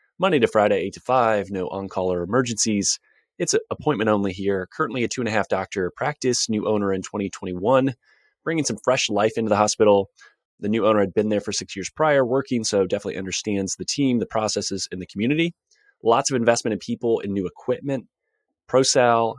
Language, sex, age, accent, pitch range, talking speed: English, male, 30-49, American, 100-130 Hz, 190 wpm